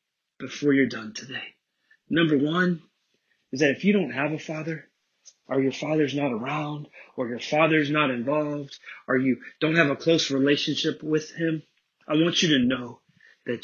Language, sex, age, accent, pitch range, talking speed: English, male, 30-49, American, 145-185 Hz, 170 wpm